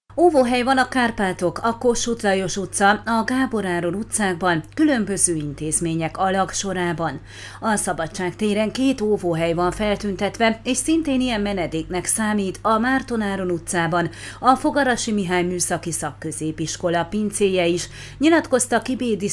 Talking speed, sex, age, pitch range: 125 wpm, female, 30-49, 170-230 Hz